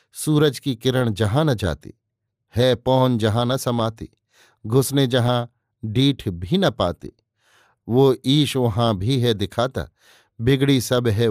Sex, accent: male, native